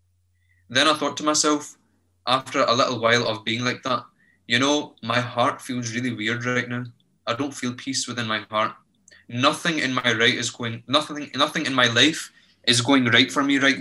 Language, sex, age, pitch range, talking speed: English, male, 20-39, 115-140 Hz, 200 wpm